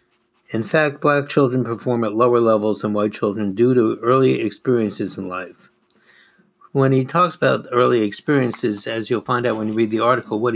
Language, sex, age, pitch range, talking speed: English, male, 60-79, 100-120 Hz, 190 wpm